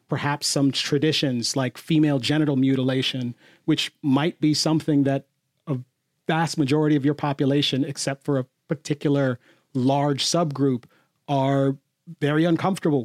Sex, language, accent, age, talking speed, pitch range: male, English, American, 40-59, 125 wpm, 140-165 Hz